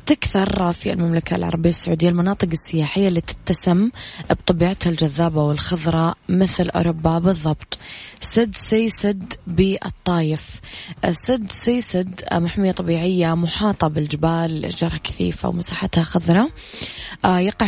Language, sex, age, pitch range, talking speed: Arabic, female, 20-39, 165-185 Hz, 100 wpm